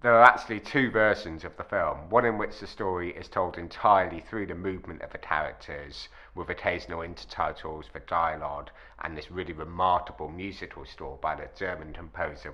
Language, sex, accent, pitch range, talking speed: English, male, British, 85-110 Hz, 175 wpm